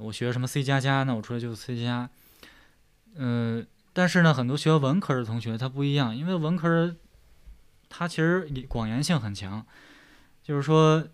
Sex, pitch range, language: male, 115-155 Hz, Chinese